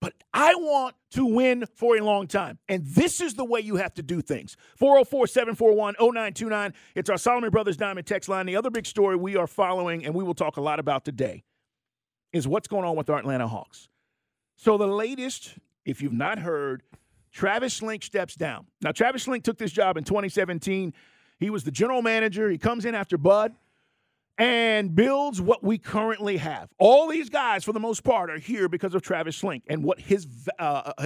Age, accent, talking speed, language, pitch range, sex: 50-69, American, 195 wpm, English, 175-230 Hz, male